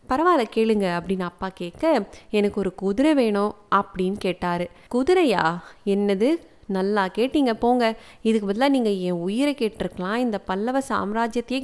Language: Tamil